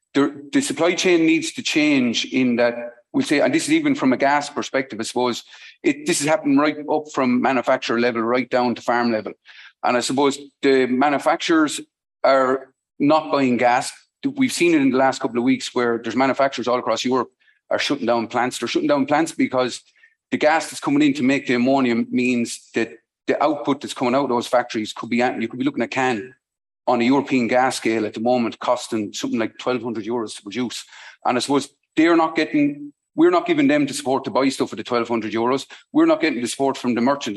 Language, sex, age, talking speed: English, male, 30-49, 220 wpm